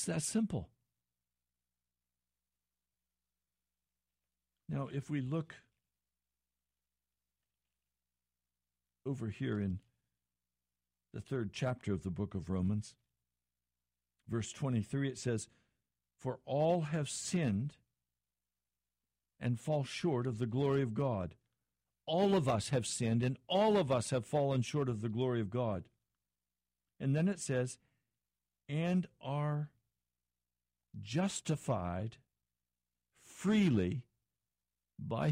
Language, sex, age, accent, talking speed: English, male, 60-79, American, 100 wpm